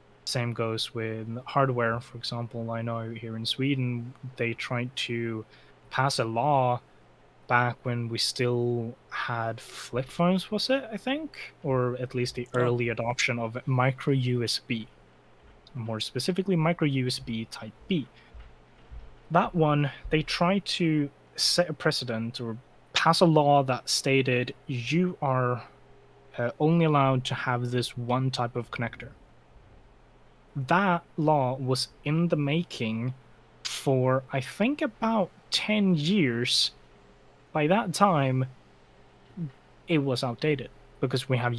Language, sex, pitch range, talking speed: English, male, 120-150 Hz, 130 wpm